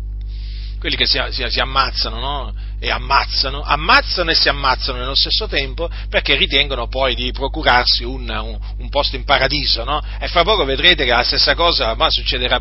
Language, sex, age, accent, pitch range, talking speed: Italian, male, 40-59, native, 110-170 Hz, 180 wpm